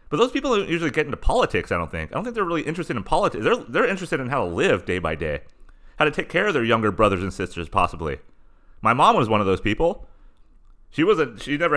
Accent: American